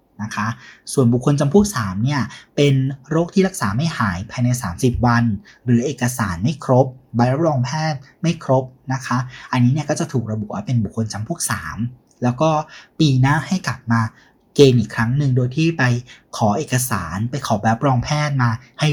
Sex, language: male, Thai